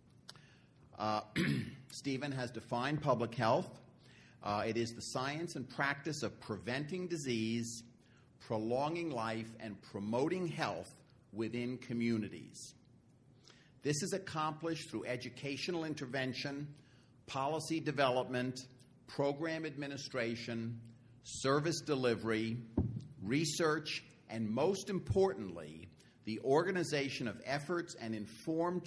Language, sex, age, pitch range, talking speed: English, male, 50-69, 115-155 Hz, 95 wpm